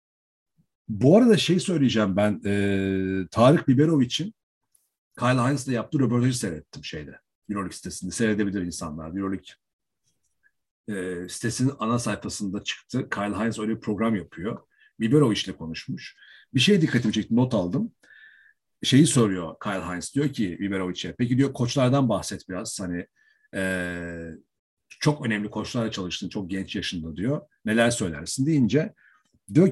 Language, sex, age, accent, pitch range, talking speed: Turkish, male, 50-69, native, 95-130 Hz, 135 wpm